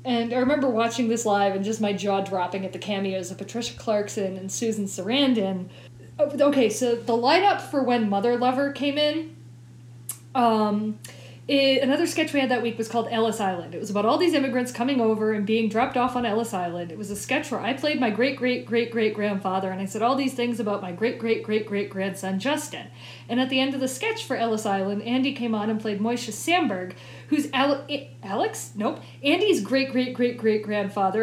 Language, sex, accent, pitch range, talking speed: English, female, American, 205-265 Hz, 190 wpm